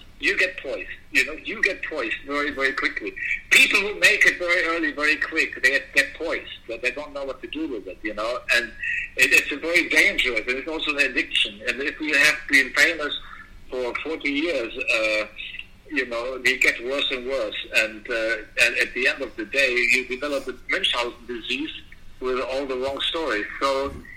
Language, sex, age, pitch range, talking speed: English, male, 60-79, 125-165 Hz, 200 wpm